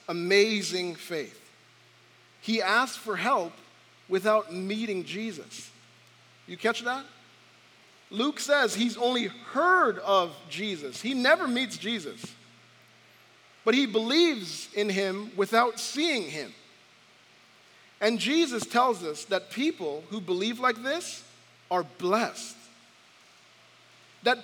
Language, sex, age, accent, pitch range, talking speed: English, male, 40-59, American, 205-255 Hz, 110 wpm